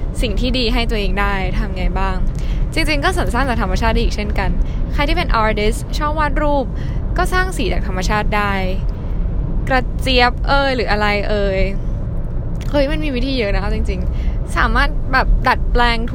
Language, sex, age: Thai, female, 10-29